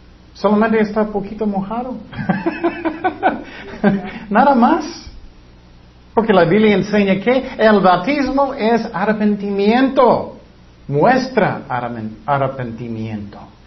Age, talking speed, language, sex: 50-69, 80 wpm, Spanish, male